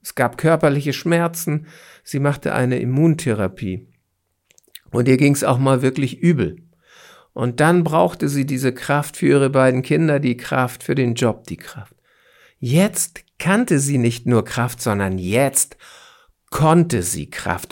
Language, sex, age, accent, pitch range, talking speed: German, male, 50-69, German, 115-145 Hz, 150 wpm